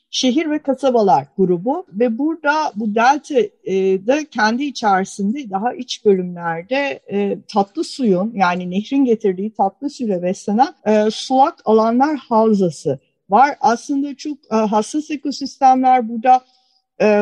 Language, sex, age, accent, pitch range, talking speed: Turkish, female, 50-69, native, 210-255 Hz, 125 wpm